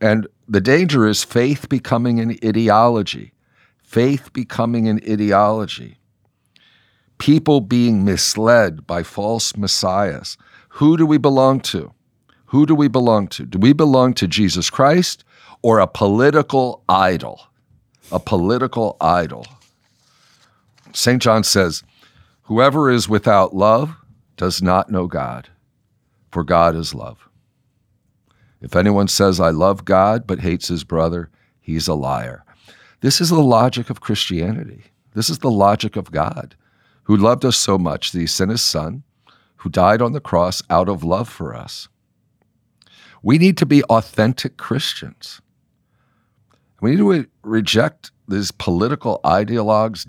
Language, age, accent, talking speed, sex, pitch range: English, 50-69, American, 135 wpm, male, 100-130 Hz